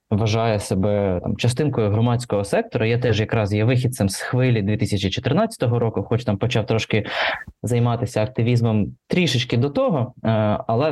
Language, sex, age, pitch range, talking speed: Ukrainian, male, 20-39, 110-135 Hz, 135 wpm